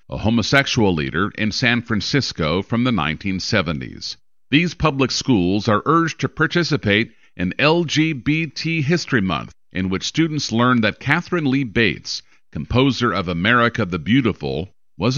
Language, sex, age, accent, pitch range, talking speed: English, male, 50-69, American, 100-145 Hz, 135 wpm